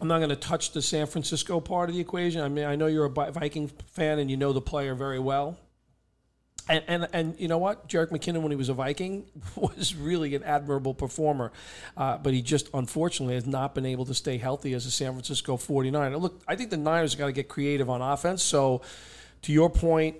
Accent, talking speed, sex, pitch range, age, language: American, 230 wpm, male, 135-155 Hz, 40-59, English